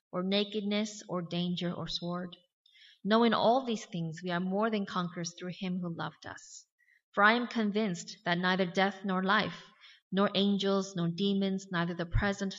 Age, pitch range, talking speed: 20-39, 170-205 Hz, 170 wpm